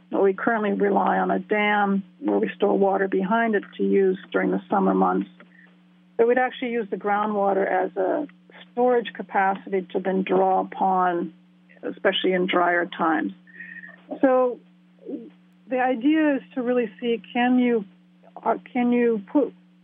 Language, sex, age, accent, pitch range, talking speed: English, female, 50-69, American, 180-225 Hz, 140 wpm